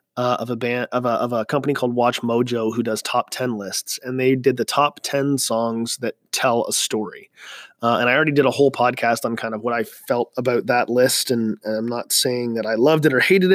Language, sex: English, male